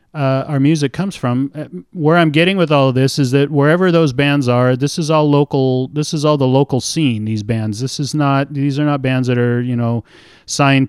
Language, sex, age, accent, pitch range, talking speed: English, male, 40-59, American, 115-145 Hz, 230 wpm